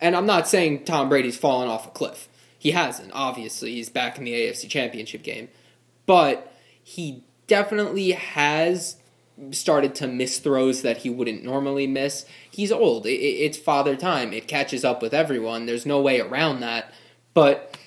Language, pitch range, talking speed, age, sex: English, 125-165 Hz, 165 wpm, 20-39, male